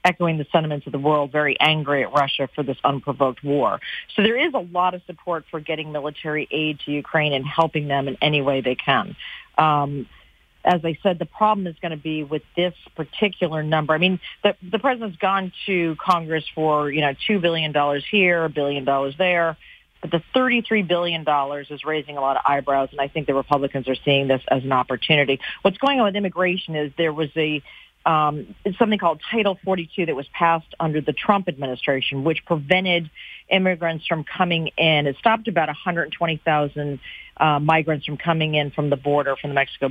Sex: female